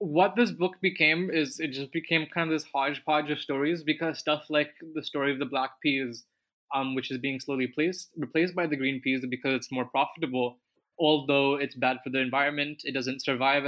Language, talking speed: English, 205 wpm